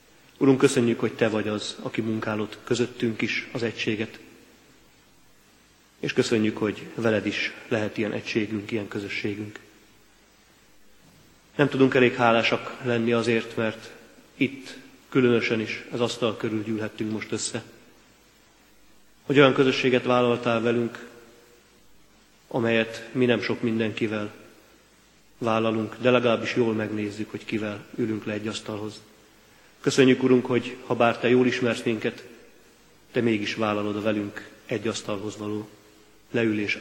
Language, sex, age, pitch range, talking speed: Hungarian, male, 30-49, 110-120 Hz, 125 wpm